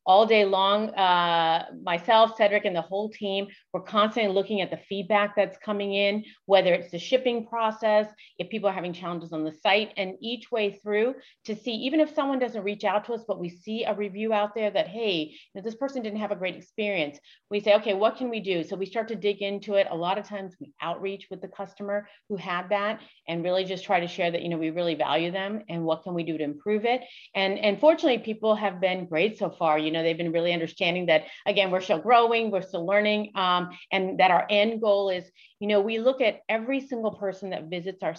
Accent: American